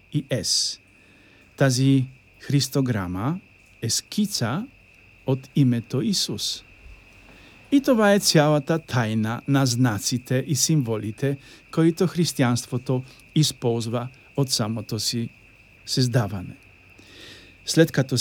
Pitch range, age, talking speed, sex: 115-140 Hz, 50-69, 90 wpm, male